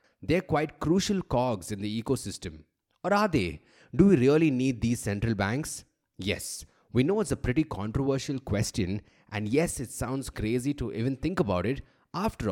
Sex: male